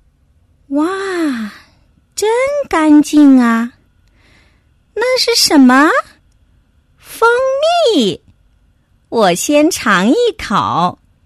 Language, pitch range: Chinese, 215-315 Hz